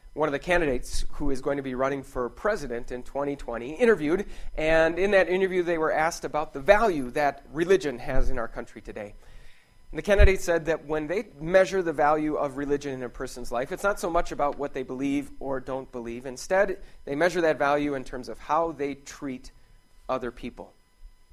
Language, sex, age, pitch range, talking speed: English, male, 30-49, 135-165 Hz, 205 wpm